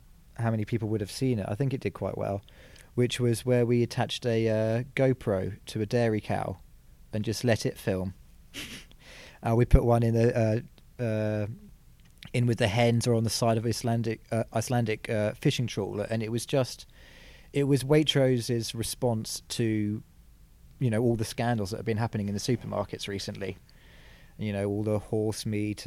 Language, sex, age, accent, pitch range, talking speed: English, male, 30-49, British, 105-125 Hz, 190 wpm